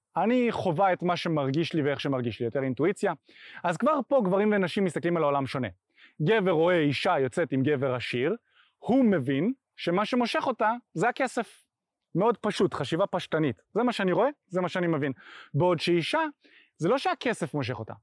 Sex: male